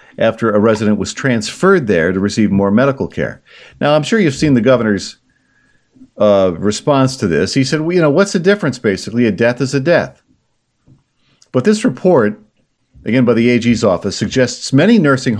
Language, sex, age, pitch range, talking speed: English, male, 50-69, 110-140 Hz, 185 wpm